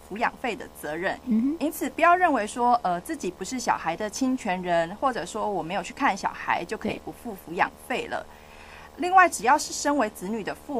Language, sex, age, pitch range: Chinese, female, 30-49, 185-260 Hz